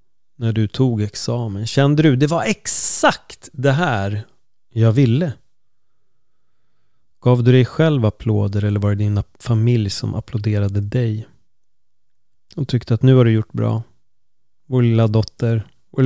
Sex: male